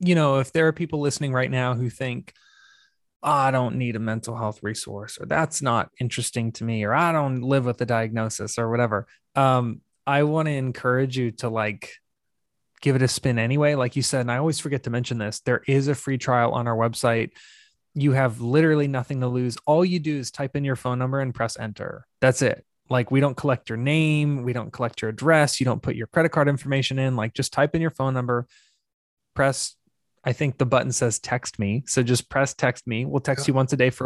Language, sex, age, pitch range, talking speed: English, male, 20-39, 120-145 Hz, 230 wpm